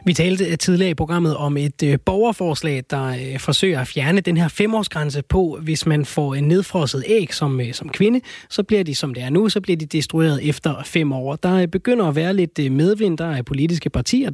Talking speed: 205 wpm